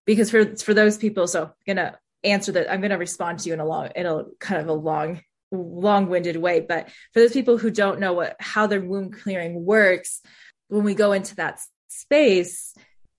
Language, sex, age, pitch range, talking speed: English, female, 20-39, 175-210 Hz, 220 wpm